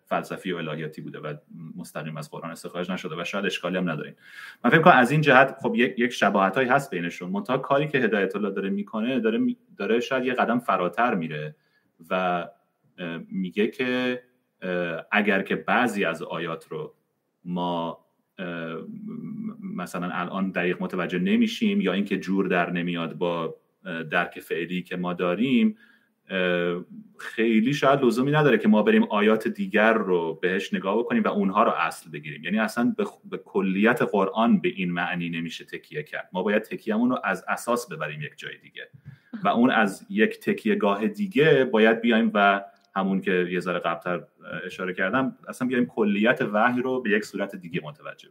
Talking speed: 165 wpm